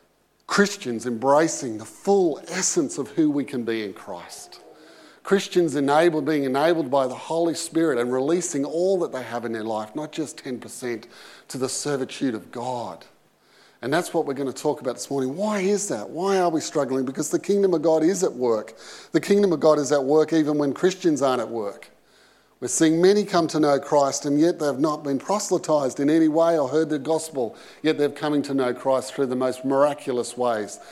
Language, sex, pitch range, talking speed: English, male, 130-175 Hz, 210 wpm